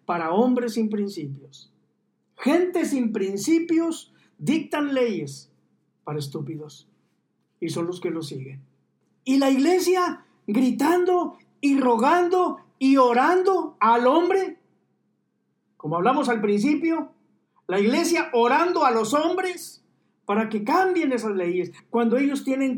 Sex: male